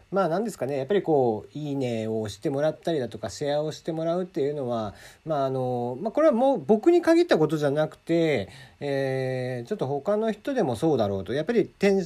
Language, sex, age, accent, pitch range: Japanese, male, 40-59, native, 105-160 Hz